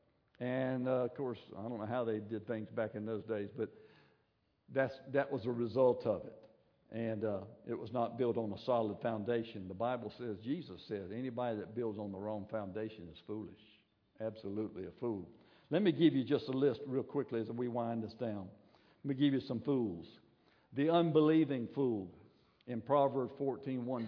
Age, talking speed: 60-79, 190 wpm